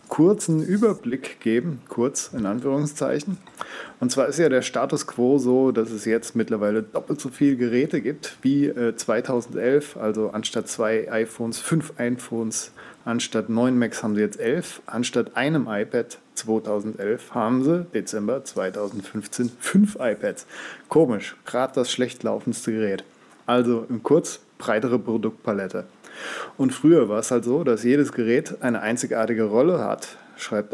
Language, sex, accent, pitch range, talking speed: German, male, German, 110-125 Hz, 145 wpm